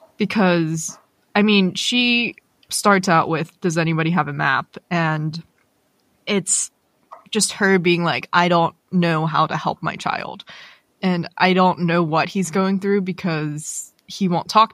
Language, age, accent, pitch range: English, 20-39, American, 165-200 Hz